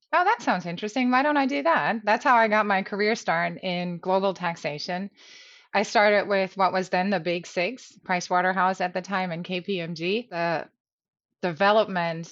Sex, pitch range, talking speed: female, 175-210 Hz, 175 wpm